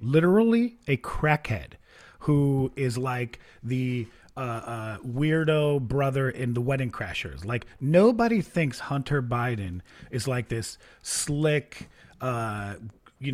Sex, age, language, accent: male, 30-49, English, American